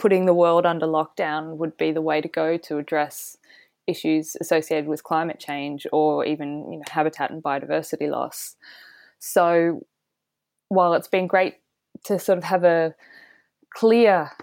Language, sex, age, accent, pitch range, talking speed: English, female, 20-39, Australian, 155-215 Hz, 145 wpm